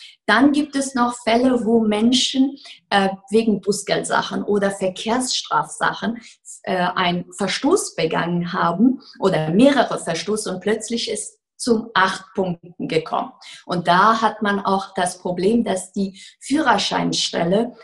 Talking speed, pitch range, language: 125 wpm, 185-225 Hz, German